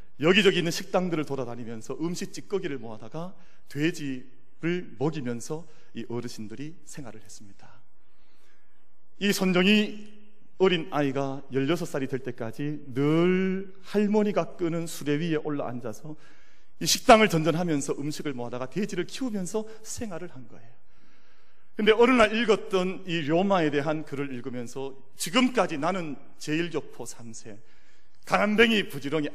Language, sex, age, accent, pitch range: Korean, male, 40-59, native, 135-190 Hz